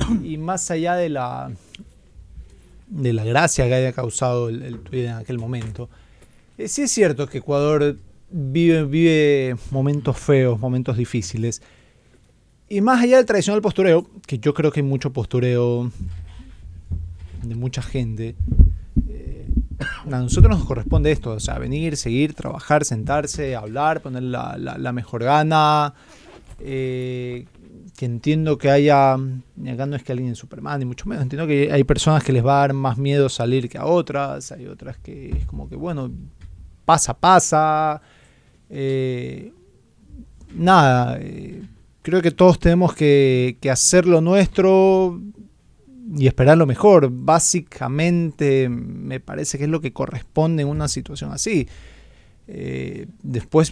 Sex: male